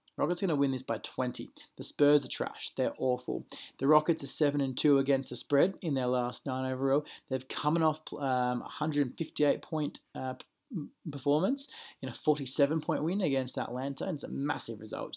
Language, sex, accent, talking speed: English, male, Australian, 180 wpm